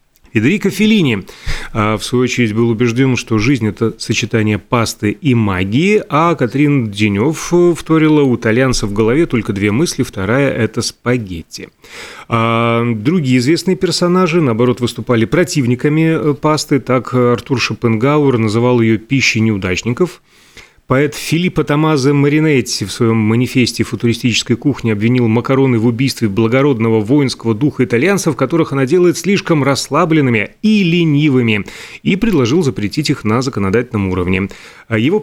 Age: 30-49